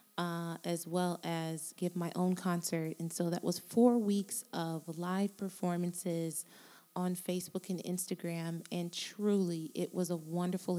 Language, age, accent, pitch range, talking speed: English, 20-39, American, 170-195 Hz, 150 wpm